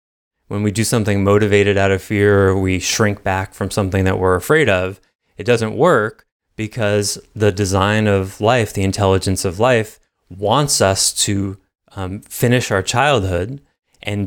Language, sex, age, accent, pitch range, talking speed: English, male, 20-39, American, 95-115 Hz, 160 wpm